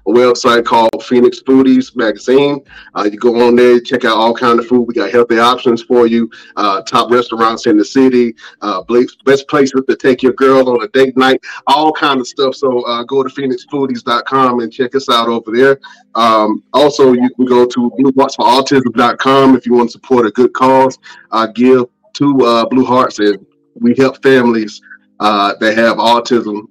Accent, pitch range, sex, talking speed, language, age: American, 115-130 Hz, male, 190 wpm, English, 30-49